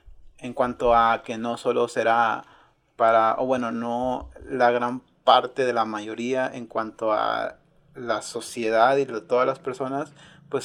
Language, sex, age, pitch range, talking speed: Spanish, male, 30-49, 115-145 Hz, 160 wpm